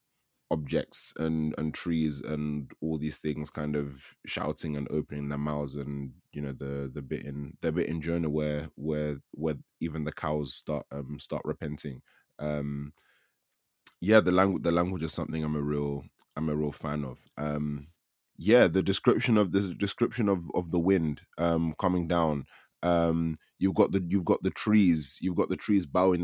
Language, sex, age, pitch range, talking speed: English, male, 20-39, 75-90 Hz, 180 wpm